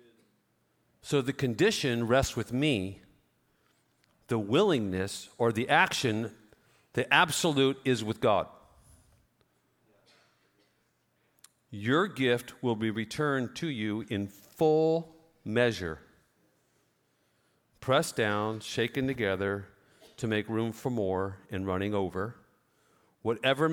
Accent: American